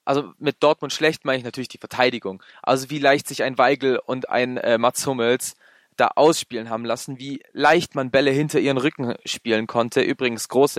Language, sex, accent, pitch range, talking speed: German, male, German, 115-150 Hz, 195 wpm